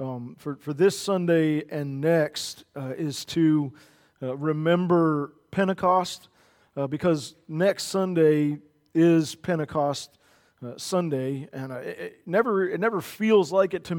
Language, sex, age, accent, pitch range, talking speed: English, male, 40-59, American, 145-180 Hz, 135 wpm